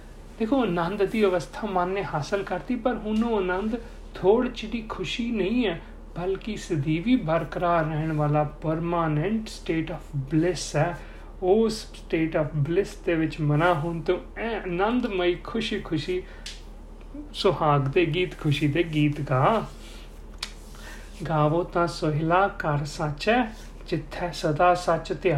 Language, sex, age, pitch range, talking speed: Punjabi, male, 40-59, 160-215 Hz, 130 wpm